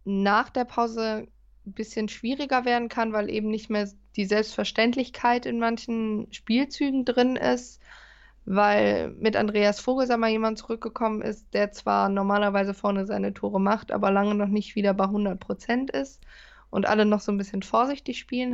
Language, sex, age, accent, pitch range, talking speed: German, female, 20-39, German, 200-235 Hz, 160 wpm